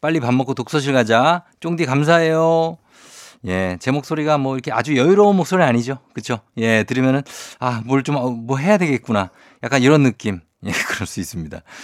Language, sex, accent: Korean, male, native